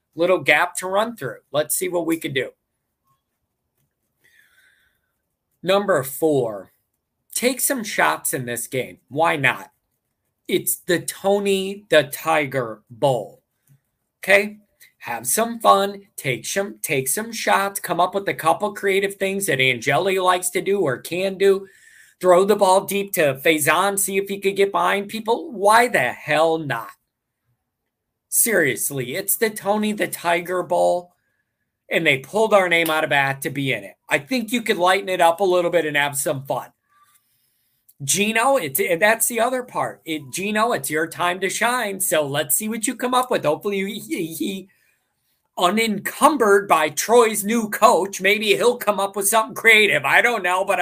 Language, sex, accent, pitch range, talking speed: English, male, American, 155-210 Hz, 165 wpm